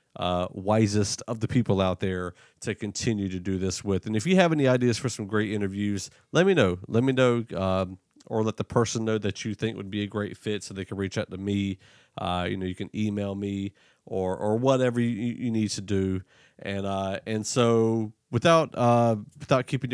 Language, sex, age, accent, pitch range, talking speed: English, male, 40-59, American, 95-115 Hz, 220 wpm